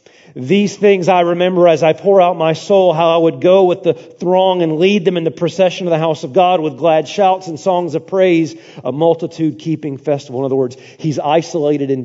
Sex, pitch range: male, 135-195 Hz